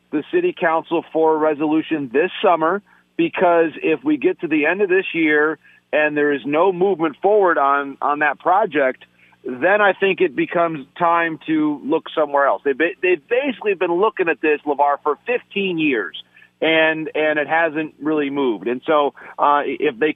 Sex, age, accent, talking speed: male, 40-59, American, 180 wpm